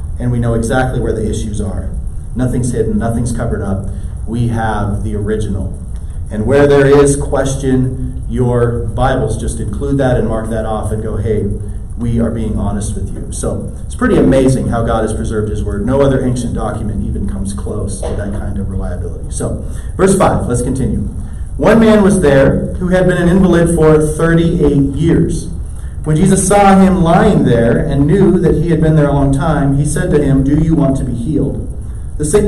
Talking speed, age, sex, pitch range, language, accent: 200 wpm, 30-49, male, 110-165 Hz, English, American